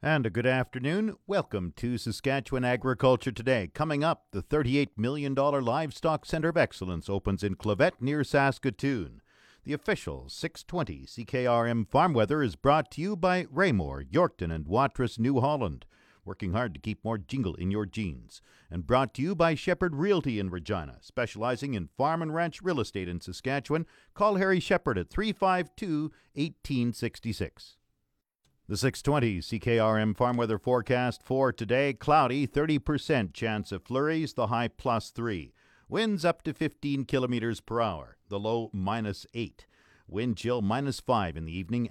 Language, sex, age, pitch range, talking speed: English, male, 50-69, 105-145 Hz, 155 wpm